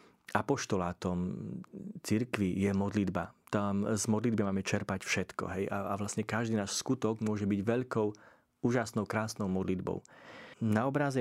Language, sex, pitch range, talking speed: Slovak, male, 100-115 Hz, 130 wpm